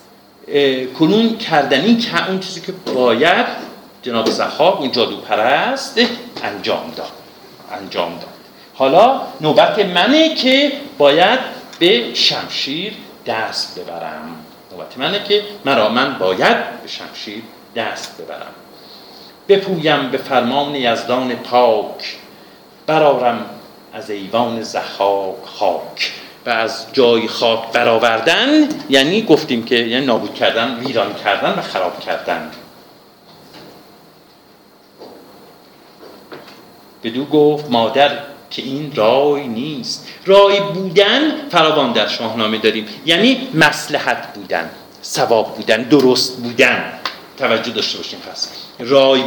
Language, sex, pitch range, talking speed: Persian, male, 120-195 Hz, 100 wpm